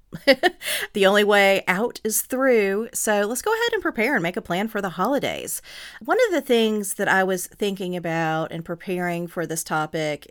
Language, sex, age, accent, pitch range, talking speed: English, female, 40-59, American, 160-205 Hz, 190 wpm